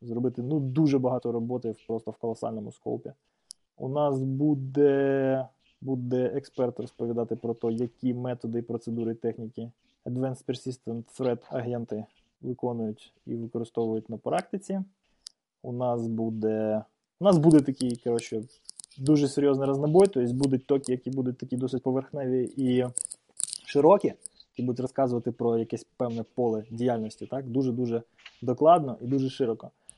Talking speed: 130 wpm